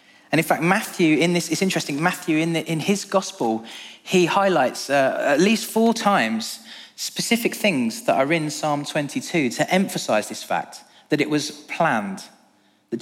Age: 20-39